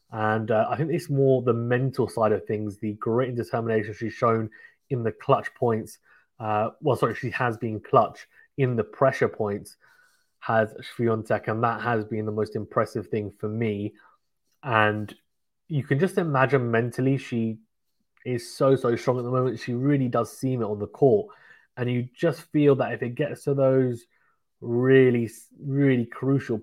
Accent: British